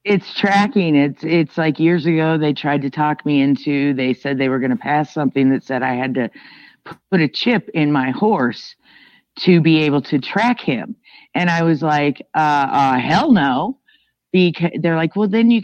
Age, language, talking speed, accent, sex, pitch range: 50-69, English, 200 wpm, American, female, 145-210 Hz